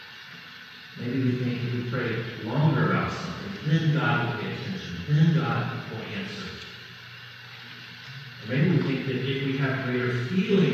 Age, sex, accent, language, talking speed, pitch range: 40-59, male, American, English, 155 wpm, 120-150 Hz